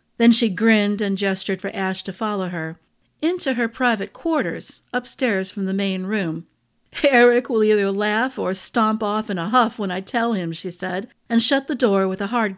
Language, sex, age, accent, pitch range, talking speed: English, female, 50-69, American, 190-235 Hz, 200 wpm